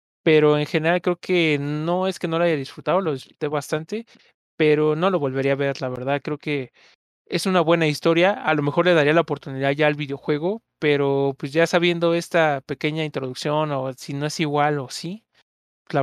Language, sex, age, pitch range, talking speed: Spanish, male, 20-39, 140-165 Hz, 200 wpm